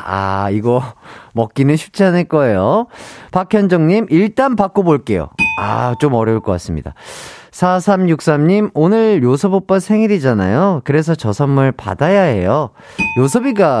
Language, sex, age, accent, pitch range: Korean, male, 40-59, native, 135-200 Hz